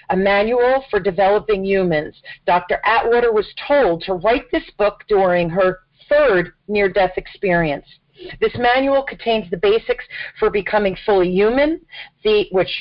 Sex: female